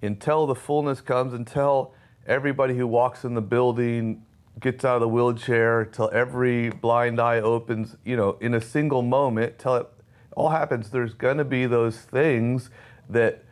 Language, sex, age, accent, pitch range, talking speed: English, male, 30-49, American, 110-125 Hz, 165 wpm